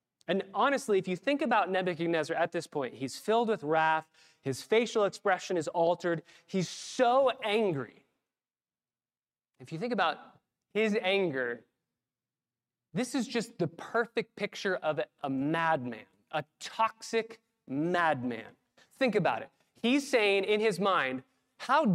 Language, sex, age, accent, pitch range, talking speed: English, male, 20-39, American, 170-235 Hz, 135 wpm